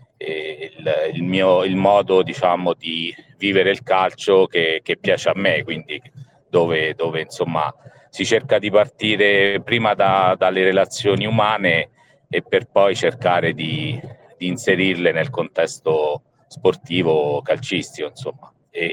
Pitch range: 85-130 Hz